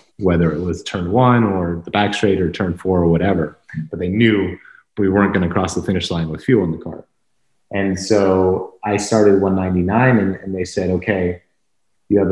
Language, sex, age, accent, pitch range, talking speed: Dutch, male, 30-49, American, 90-105 Hz, 205 wpm